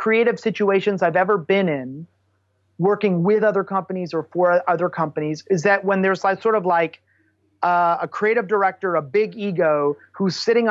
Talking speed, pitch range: 175 wpm, 155-205 Hz